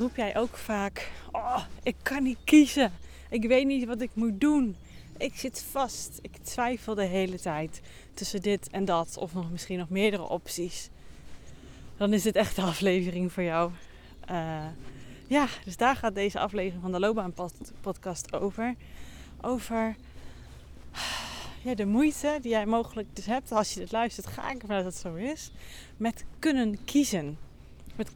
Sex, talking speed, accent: female, 160 wpm, Dutch